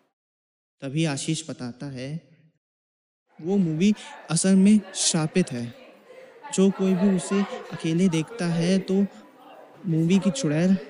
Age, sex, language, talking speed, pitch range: 20-39, male, Hindi, 115 wpm, 130-180 Hz